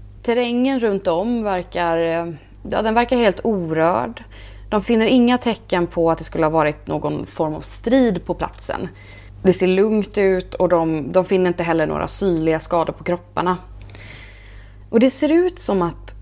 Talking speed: 170 wpm